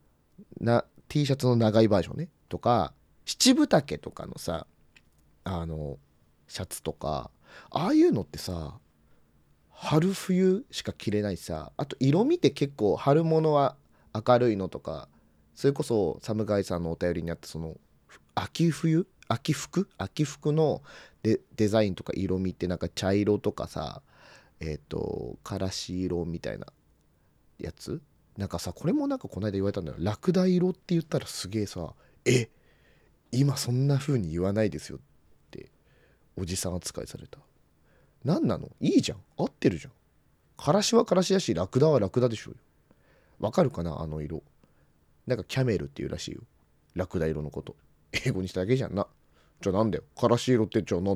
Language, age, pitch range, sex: Japanese, 30-49, 85-140 Hz, male